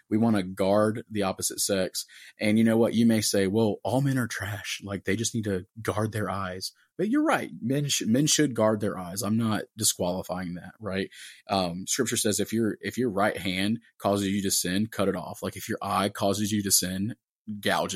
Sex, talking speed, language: male, 225 wpm, English